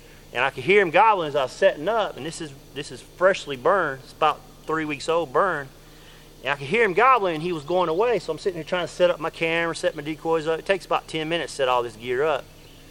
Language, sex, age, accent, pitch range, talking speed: English, male, 40-59, American, 130-165 Hz, 280 wpm